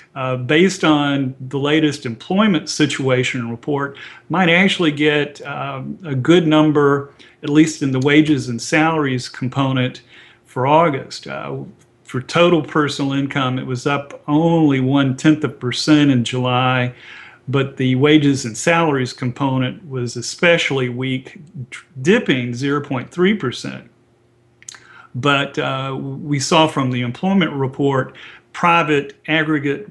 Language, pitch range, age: English, 130-155 Hz, 40-59